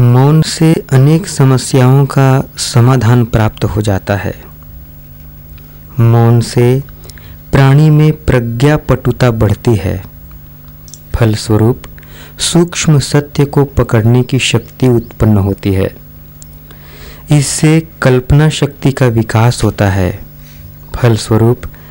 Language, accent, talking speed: Hindi, native, 100 wpm